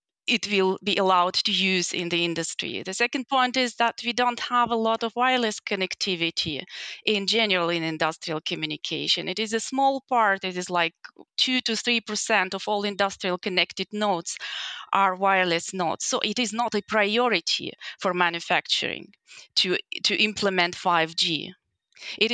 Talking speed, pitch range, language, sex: 160 wpm, 180-225 Hz, English, female